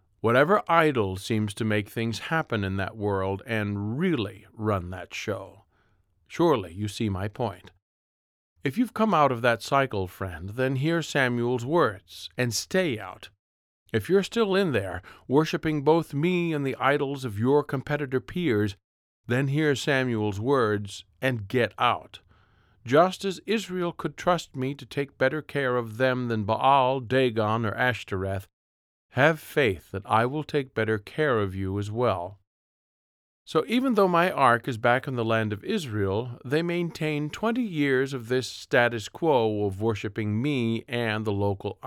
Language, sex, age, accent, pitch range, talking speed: English, male, 50-69, American, 100-145 Hz, 160 wpm